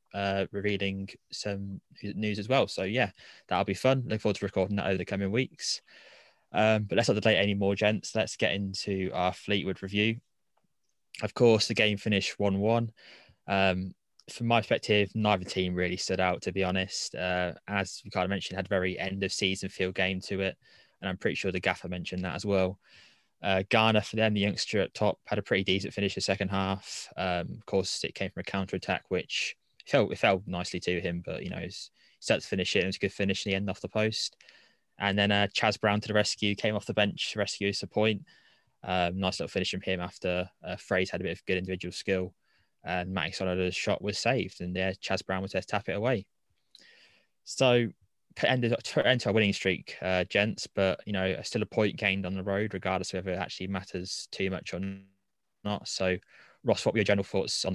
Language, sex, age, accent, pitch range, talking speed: English, male, 20-39, British, 95-105 Hz, 220 wpm